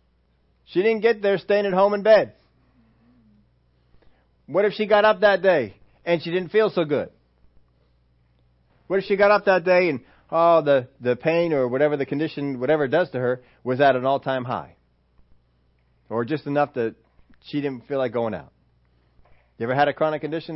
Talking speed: 185 wpm